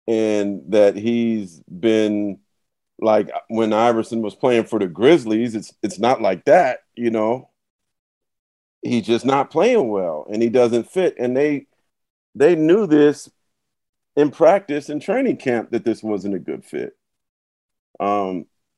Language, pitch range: English, 100-120 Hz